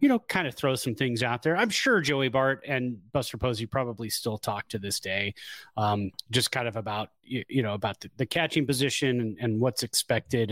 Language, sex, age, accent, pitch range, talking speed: English, male, 30-49, American, 115-145 Hz, 220 wpm